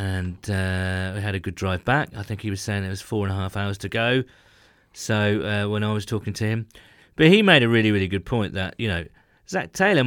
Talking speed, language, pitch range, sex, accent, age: 255 wpm, English, 100-135 Hz, male, British, 40-59